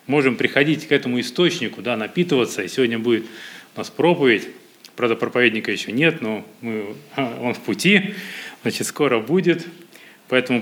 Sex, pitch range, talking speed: male, 115-150 Hz, 135 wpm